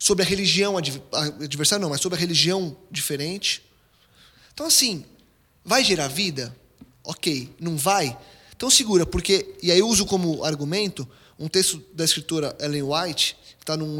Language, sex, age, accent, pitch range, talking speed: Portuguese, male, 20-39, Brazilian, 140-185 Hz, 155 wpm